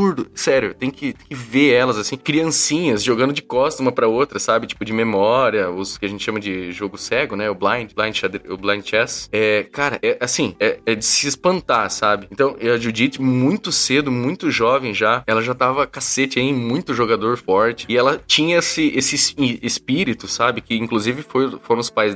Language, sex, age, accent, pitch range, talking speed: Portuguese, male, 20-39, Brazilian, 110-140 Hz, 200 wpm